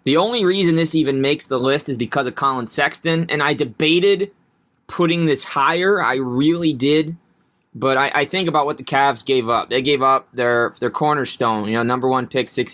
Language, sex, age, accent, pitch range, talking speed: English, male, 20-39, American, 120-140 Hz, 205 wpm